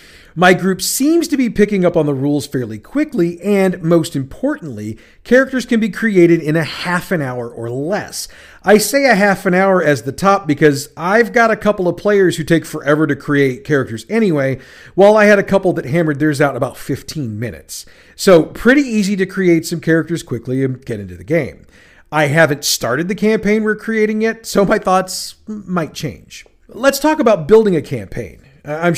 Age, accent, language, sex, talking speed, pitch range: 40-59, American, English, male, 195 wpm, 145-195 Hz